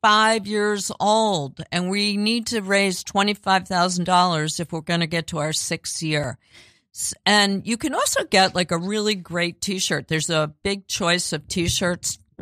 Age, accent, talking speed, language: 50-69, American, 190 wpm, English